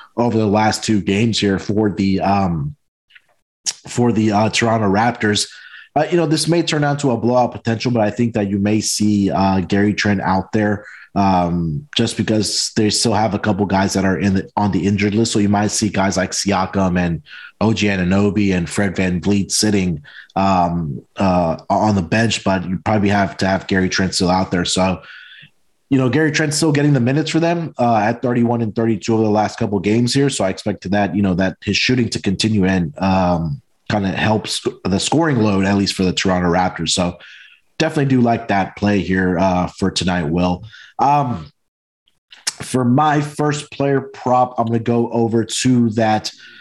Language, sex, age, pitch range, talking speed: English, male, 20-39, 95-120 Hz, 205 wpm